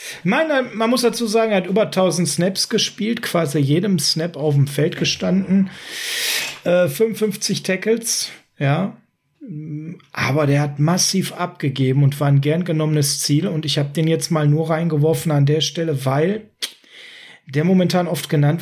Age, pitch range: 40-59, 145-180 Hz